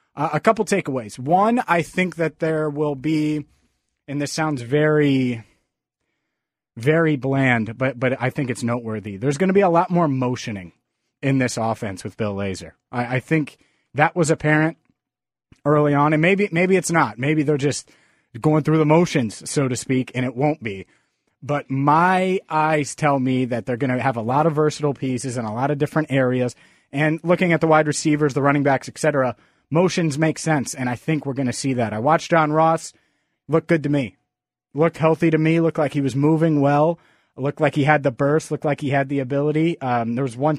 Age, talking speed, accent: 30-49, 210 wpm, American